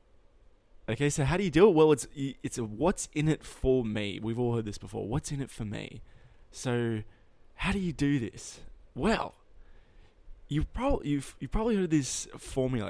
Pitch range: 110-135 Hz